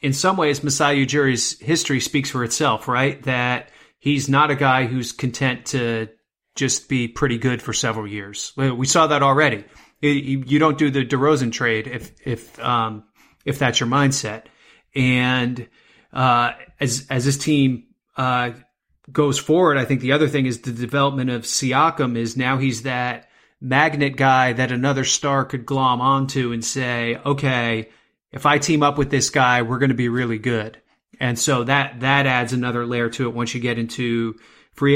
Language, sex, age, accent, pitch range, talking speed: English, male, 30-49, American, 125-150 Hz, 175 wpm